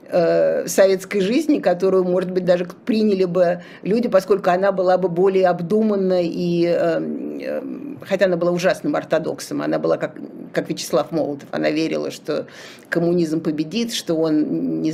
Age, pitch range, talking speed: 50-69, 165-200 Hz, 135 wpm